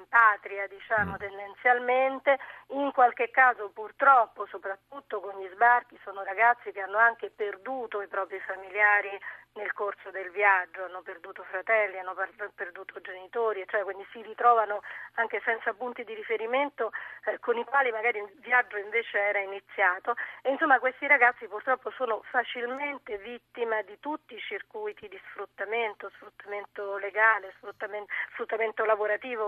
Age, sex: 40-59, female